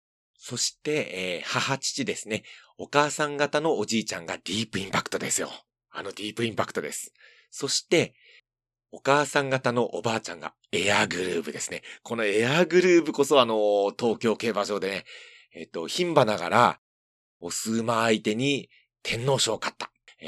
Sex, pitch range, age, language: male, 100-150 Hz, 40-59, Japanese